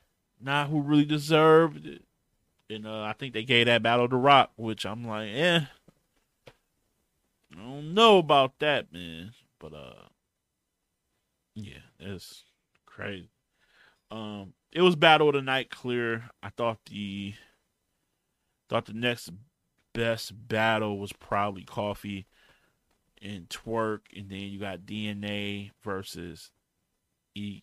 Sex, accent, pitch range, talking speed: male, American, 100-125 Hz, 125 wpm